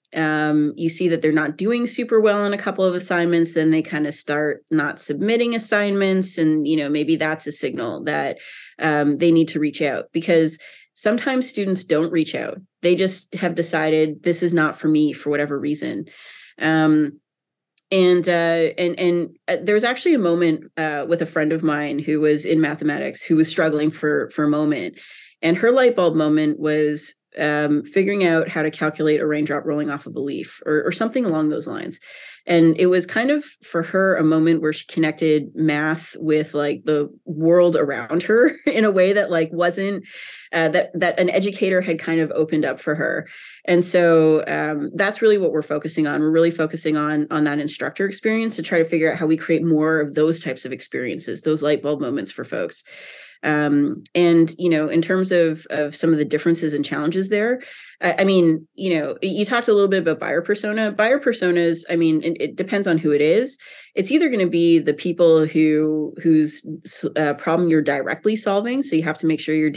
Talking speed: 205 wpm